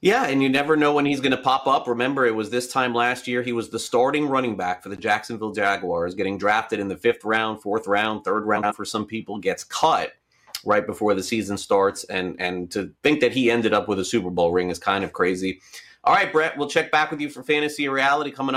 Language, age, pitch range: English, 30-49, 105-135 Hz